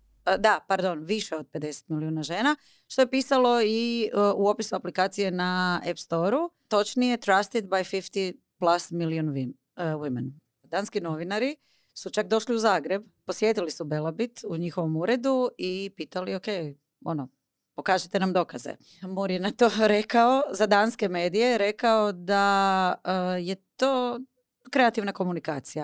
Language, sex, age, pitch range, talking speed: Croatian, female, 30-49, 165-215 Hz, 145 wpm